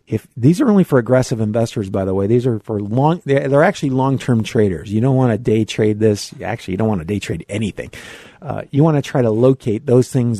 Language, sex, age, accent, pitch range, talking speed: English, male, 50-69, American, 105-135 Hz, 250 wpm